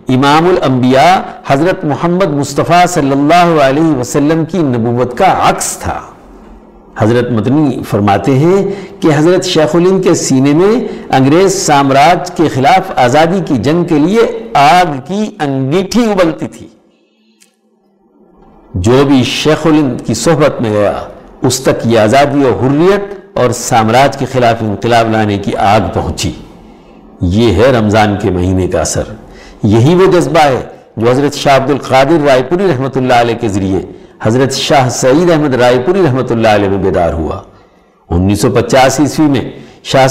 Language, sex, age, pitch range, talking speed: Urdu, male, 60-79, 120-160 Hz, 150 wpm